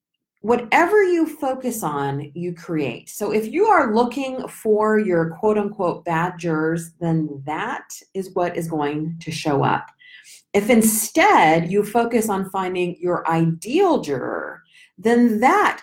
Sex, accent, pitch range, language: female, American, 170-260 Hz, English